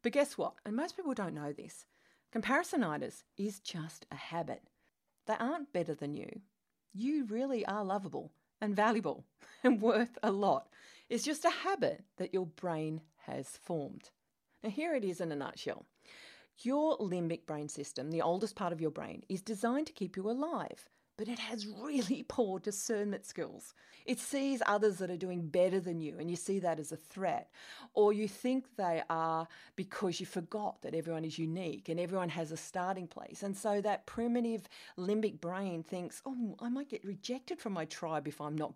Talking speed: 185 wpm